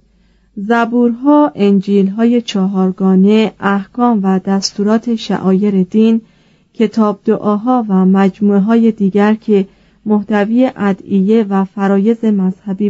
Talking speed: 90 wpm